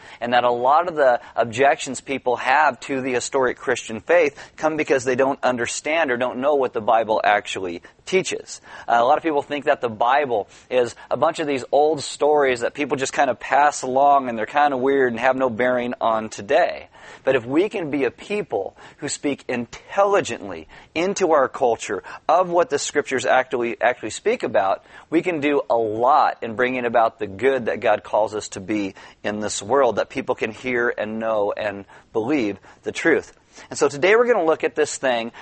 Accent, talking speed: American, 205 wpm